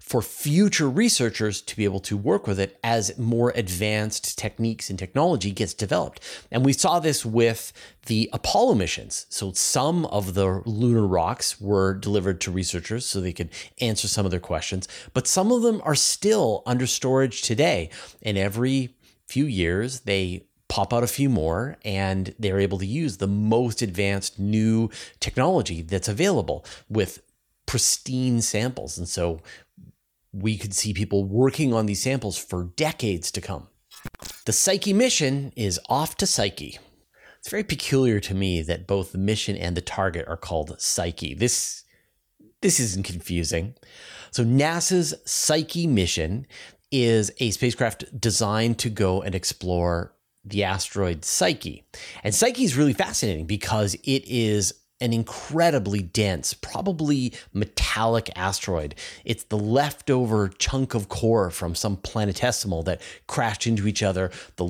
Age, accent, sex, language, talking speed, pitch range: 30-49, American, male, English, 150 wpm, 95-125 Hz